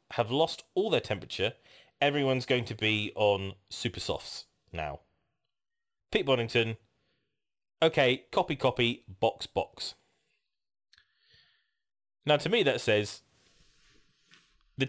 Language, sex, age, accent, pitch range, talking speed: English, male, 20-39, British, 95-135 Hz, 105 wpm